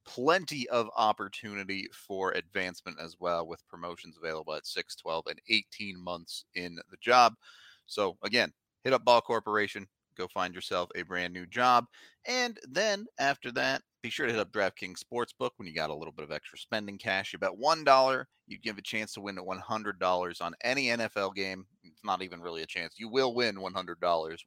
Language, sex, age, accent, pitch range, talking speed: English, male, 30-49, American, 90-120 Hz, 185 wpm